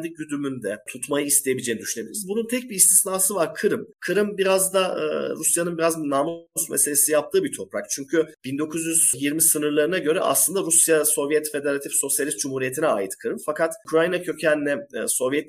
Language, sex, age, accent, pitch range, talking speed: Turkish, male, 40-59, native, 125-175 Hz, 145 wpm